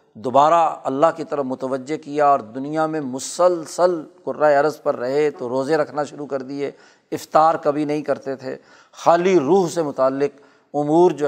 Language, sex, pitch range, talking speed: Urdu, male, 130-155 Hz, 165 wpm